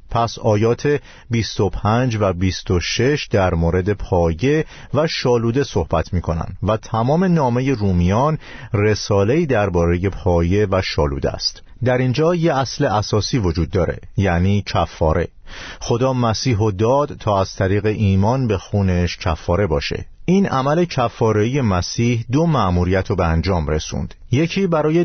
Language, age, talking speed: Persian, 50-69, 130 wpm